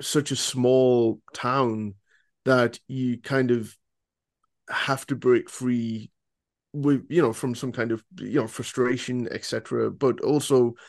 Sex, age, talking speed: male, 20-39, 140 wpm